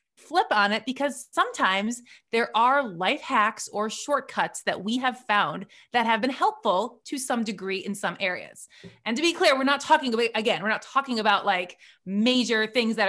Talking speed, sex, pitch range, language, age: 195 wpm, female, 200-265 Hz, English, 30-49